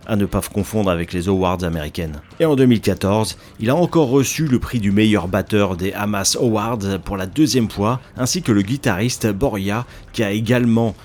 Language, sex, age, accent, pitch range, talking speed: French, male, 40-59, French, 100-125 Hz, 185 wpm